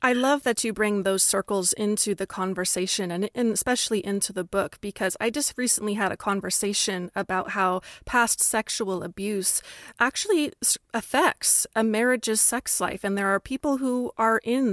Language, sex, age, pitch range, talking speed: English, female, 30-49, 195-245 Hz, 165 wpm